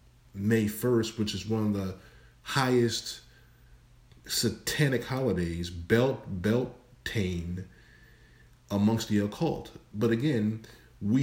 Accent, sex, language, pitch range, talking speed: American, male, English, 100-130 Hz, 100 wpm